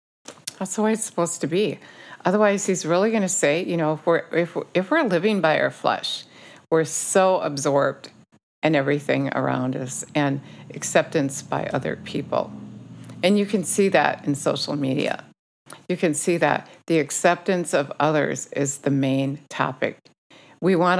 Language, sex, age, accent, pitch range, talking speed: English, female, 50-69, American, 140-180 Hz, 160 wpm